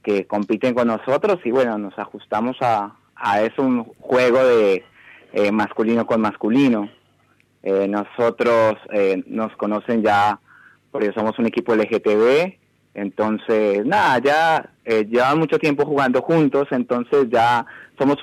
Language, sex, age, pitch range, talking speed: Spanish, male, 30-49, 110-135 Hz, 135 wpm